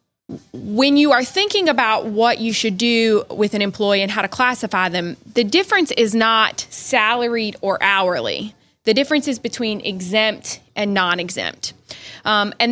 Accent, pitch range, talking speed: American, 210-265 Hz, 150 wpm